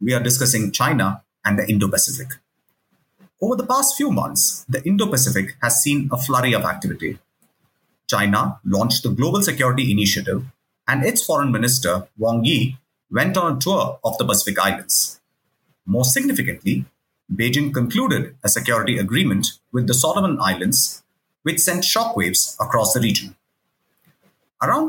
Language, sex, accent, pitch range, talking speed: English, male, Indian, 110-155 Hz, 140 wpm